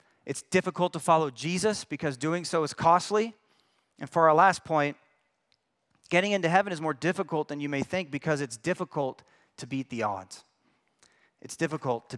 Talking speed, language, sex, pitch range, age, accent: 170 wpm, English, male, 130-175 Hz, 30-49, American